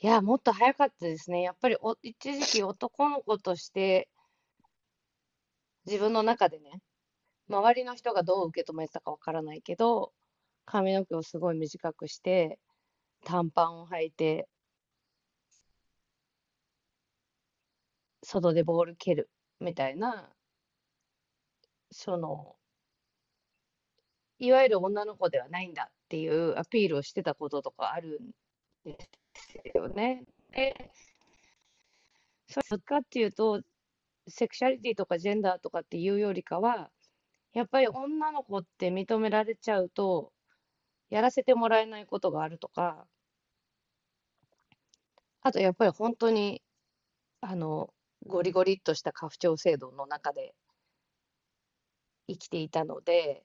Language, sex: Japanese, female